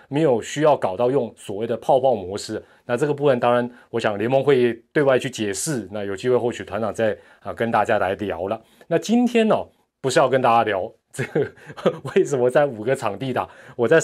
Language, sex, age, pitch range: Chinese, male, 30-49, 115-165 Hz